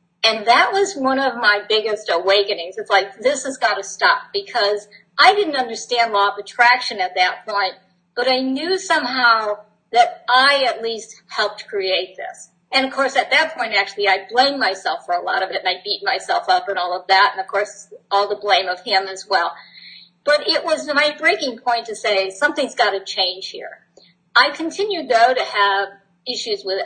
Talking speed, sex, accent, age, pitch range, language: 200 wpm, female, American, 50-69, 195-280 Hz, English